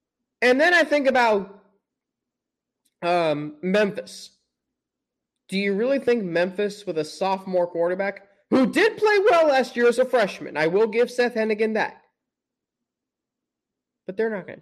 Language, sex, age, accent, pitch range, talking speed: English, male, 20-39, American, 185-240 Hz, 145 wpm